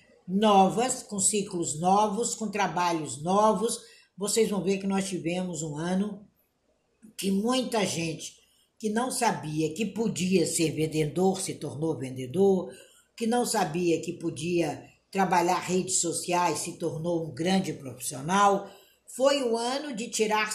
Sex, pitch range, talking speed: female, 170-220 Hz, 135 wpm